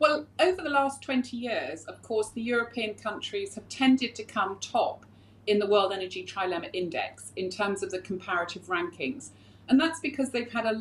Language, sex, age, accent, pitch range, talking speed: English, female, 40-59, British, 195-295 Hz, 190 wpm